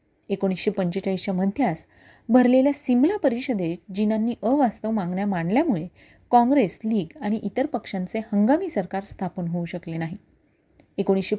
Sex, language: female, Marathi